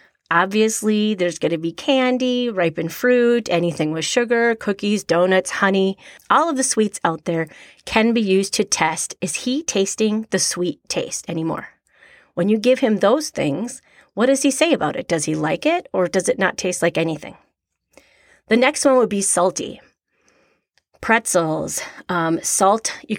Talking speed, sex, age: 170 wpm, female, 30-49